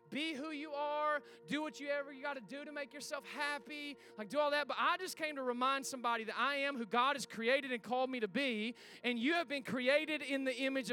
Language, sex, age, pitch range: English, male, 20-39, 235-295 Hz